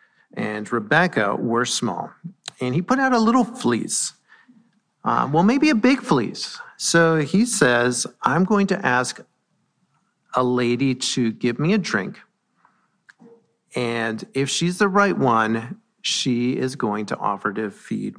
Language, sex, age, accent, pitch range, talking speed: English, male, 50-69, American, 115-190 Hz, 145 wpm